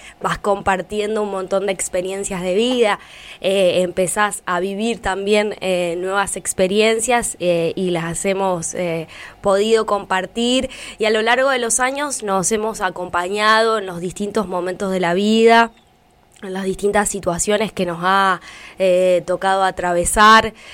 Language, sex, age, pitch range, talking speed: Spanish, female, 10-29, 170-195 Hz, 145 wpm